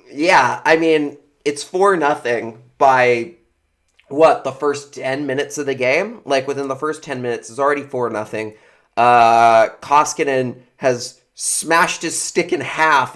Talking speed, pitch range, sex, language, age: 145 wpm, 115-145 Hz, male, English, 20-39